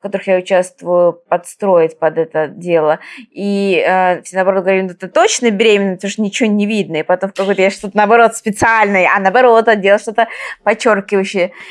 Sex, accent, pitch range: female, native, 195-245 Hz